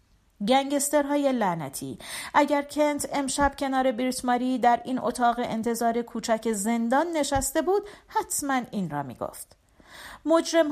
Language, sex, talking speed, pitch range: Persian, female, 130 wpm, 205-280 Hz